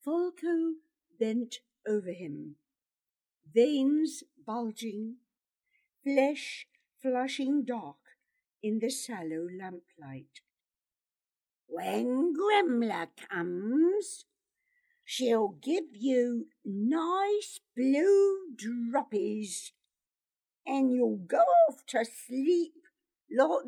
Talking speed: 75 wpm